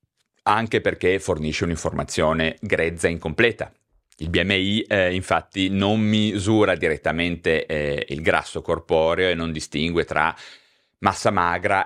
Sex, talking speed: male, 120 wpm